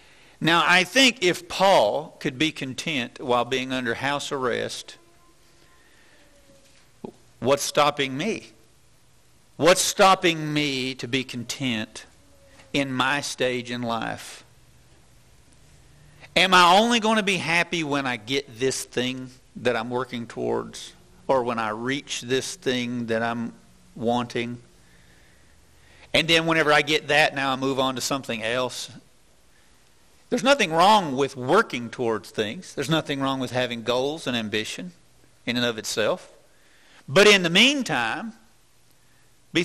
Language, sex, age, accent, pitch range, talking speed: English, male, 50-69, American, 120-165 Hz, 135 wpm